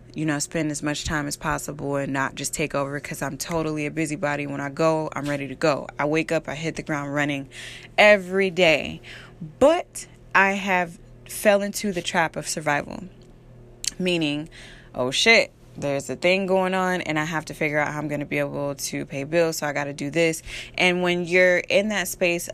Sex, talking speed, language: female, 210 wpm, English